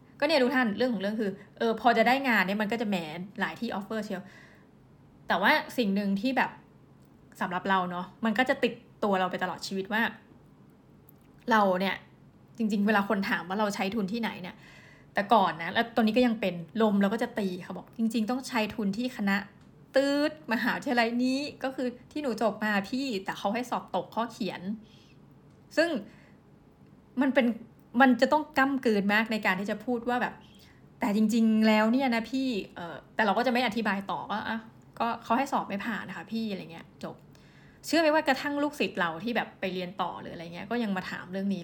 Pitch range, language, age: 195-240 Hz, Thai, 20-39